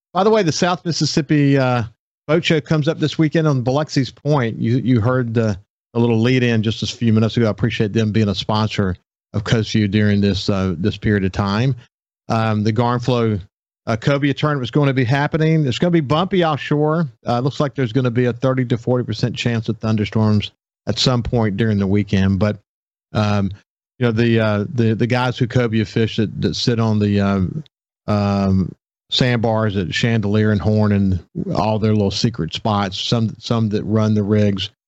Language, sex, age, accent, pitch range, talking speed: English, male, 50-69, American, 105-135 Hz, 200 wpm